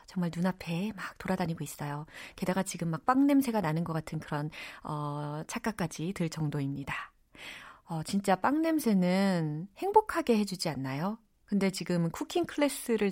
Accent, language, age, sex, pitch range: native, Korean, 30-49, female, 165-275 Hz